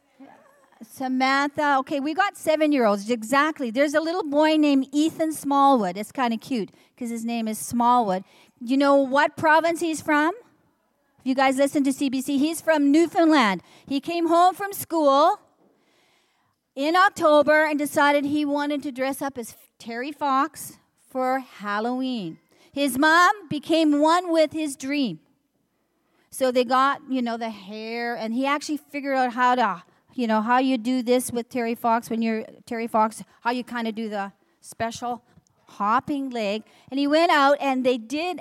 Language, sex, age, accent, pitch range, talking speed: English, female, 40-59, American, 235-295 Hz, 165 wpm